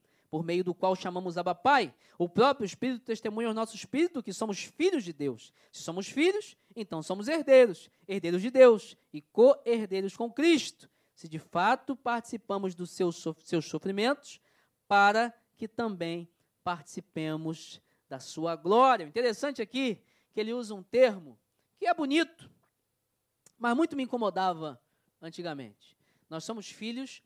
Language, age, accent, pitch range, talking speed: Portuguese, 20-39, Brazilian, 180-270 Hz, 145 wpm